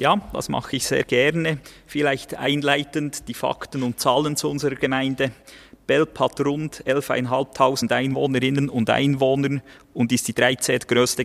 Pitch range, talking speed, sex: 120-140 Hz, 145 wpm, male